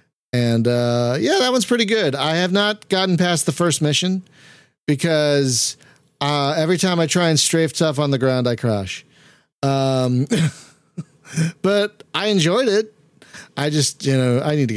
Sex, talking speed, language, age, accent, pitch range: male, 165 wpm, English, 40-59, American, 120-155 Hz